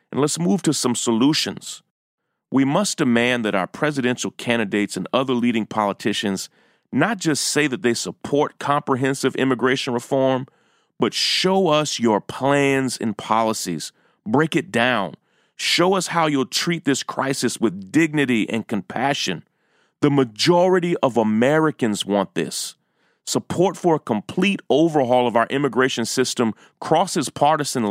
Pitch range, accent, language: 120-155 Hz, American, English